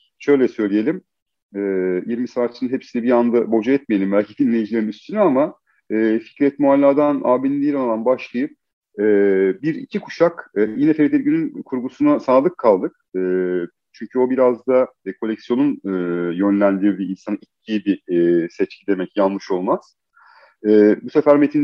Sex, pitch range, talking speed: male, 100-140 Hz, 120 wpm